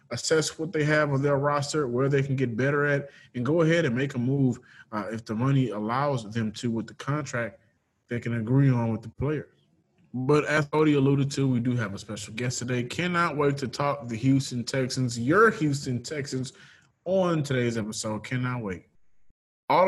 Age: 20-39